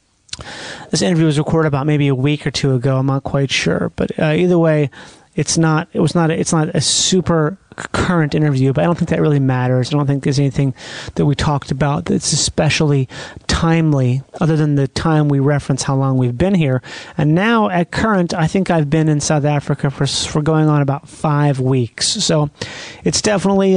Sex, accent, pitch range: male, American, 145-180 Hz